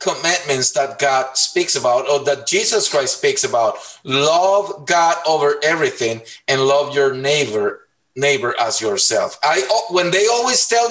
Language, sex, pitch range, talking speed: English, male, 145-210 Hz, 150 wpm